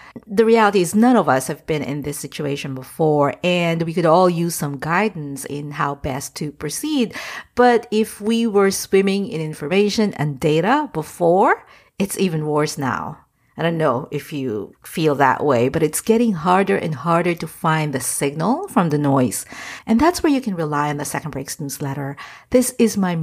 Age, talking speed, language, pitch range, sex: 50-69, 190 wpm, English, 150-220 Hz, female